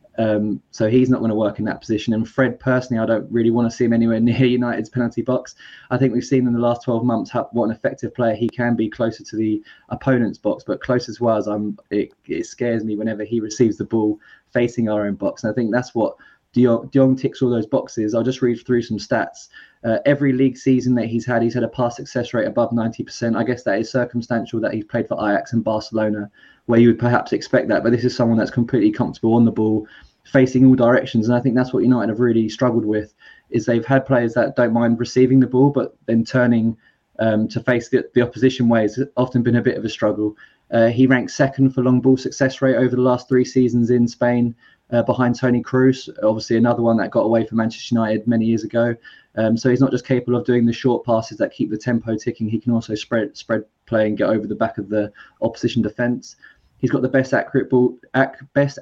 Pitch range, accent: 115-125 Hz, British